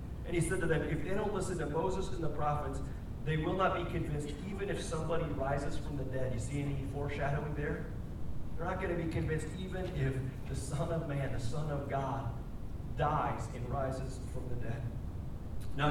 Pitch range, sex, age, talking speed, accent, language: 130-165 Hz, male, 30-49, 205 wpm, American, English